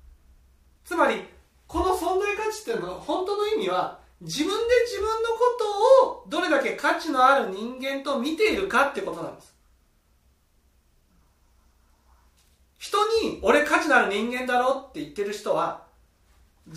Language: Japanese